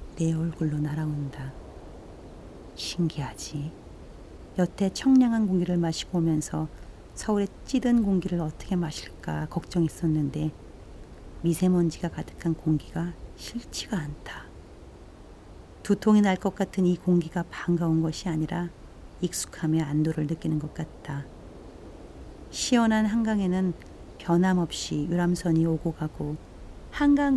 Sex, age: female, 40-59